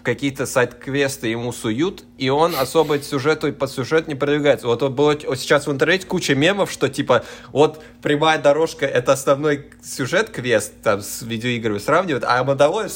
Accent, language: native, Russian